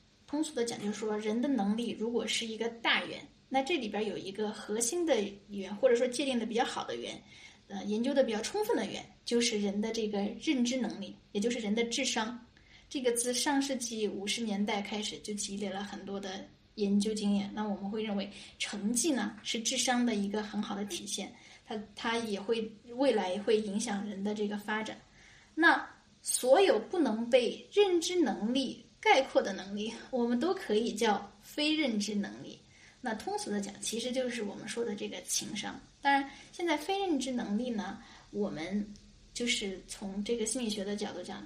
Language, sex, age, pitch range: Chinese, female, 10-29, 205-255 Hz